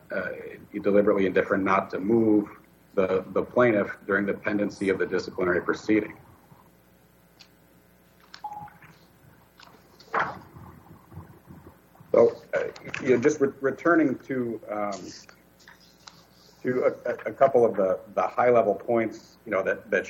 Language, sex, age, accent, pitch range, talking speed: English, male, 50-69, American, 90-120 Hz, 115 wpm